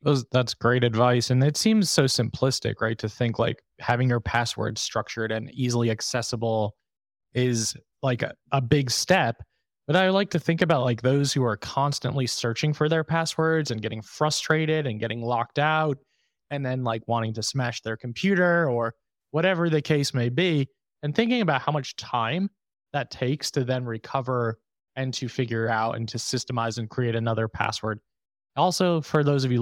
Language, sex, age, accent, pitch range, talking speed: English, male, 20-39, American, 115-145 Hz, 180 wpm